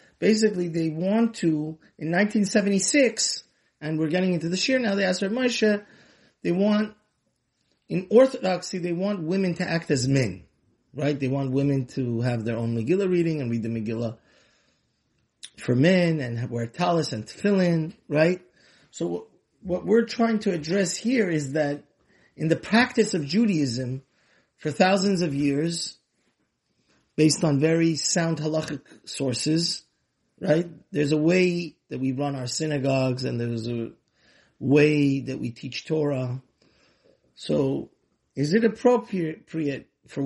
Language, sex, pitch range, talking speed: English, male, 140-185 Hz, 145 wpm